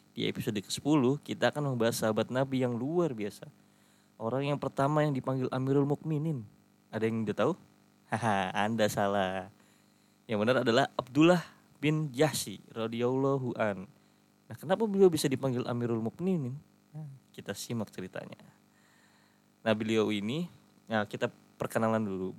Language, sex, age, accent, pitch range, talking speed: Indonesian, male, 20-39, native, 105-125 Hz, 135 wpm